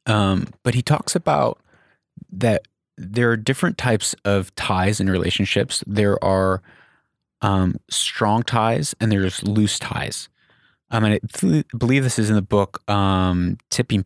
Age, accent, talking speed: 30-49, American, 160 wpm